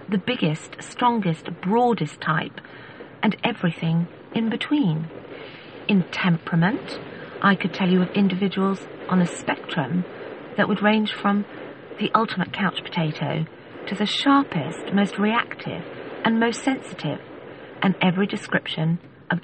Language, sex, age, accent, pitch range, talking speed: English, female, 40-59, British, 165-210 Hz, 125 wpm